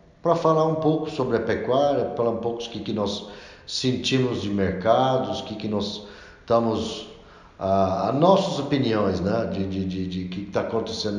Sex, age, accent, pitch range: male, 60-79, Brazilian, 90-110 Hz